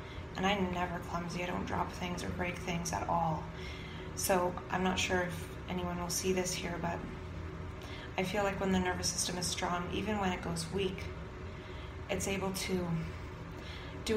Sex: female